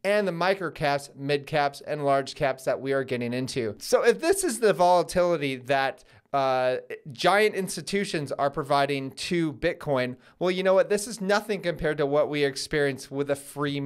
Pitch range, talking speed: 140-195 Hz, 185 wpm